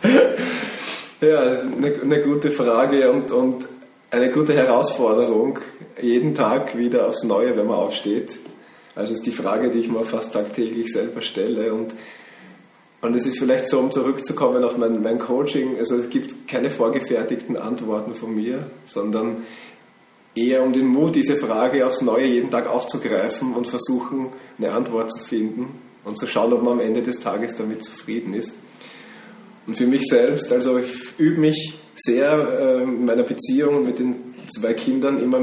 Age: 20-39